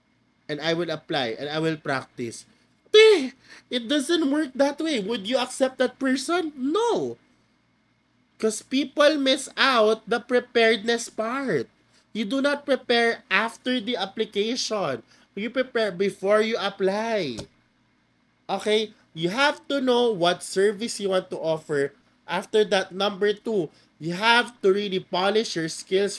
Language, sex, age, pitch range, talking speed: Filipino, male, 20-39, 185-230 Hz, 135 wpm